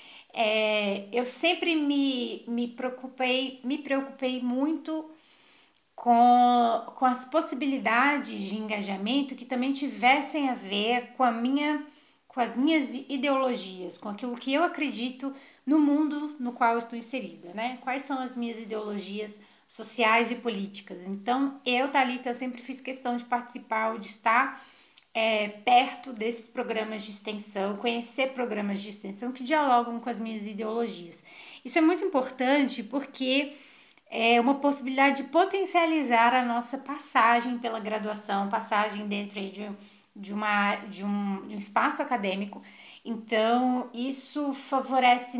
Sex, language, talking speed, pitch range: female, Portuguese, 140 wpm, 220-270 Hz